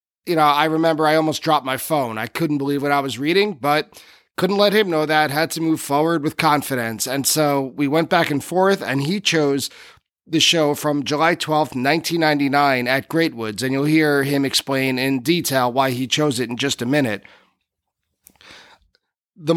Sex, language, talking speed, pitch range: male, English, 190 wpm, 135-165 Hz